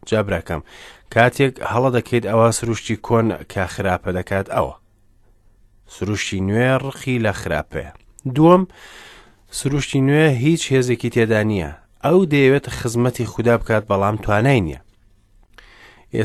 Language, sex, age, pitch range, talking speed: English, male, 30-49, 100-120 Hz, 125 wpm